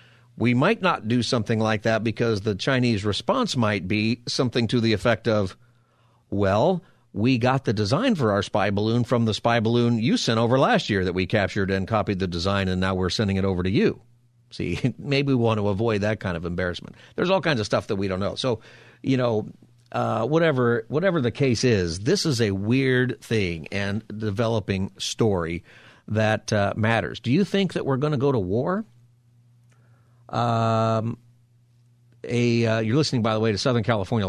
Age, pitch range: 50-69, 110-125 Hz